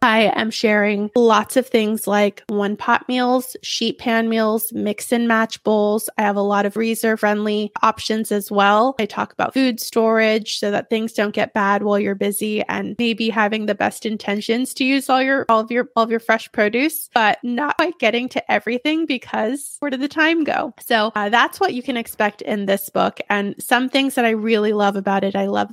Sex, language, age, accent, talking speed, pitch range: female, English, 20-39, American, 215 wpm, 205-235 Hz